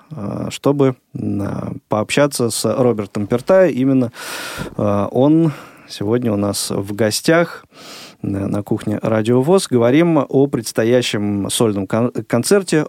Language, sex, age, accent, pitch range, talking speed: Russian, male, 20-39, native, 105-135 Hz, 100 wpm